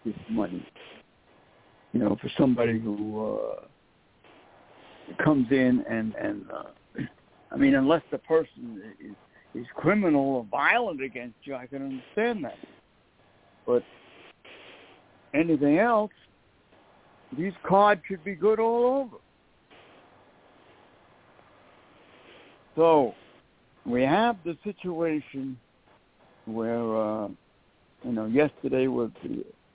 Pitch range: 120-160 Hz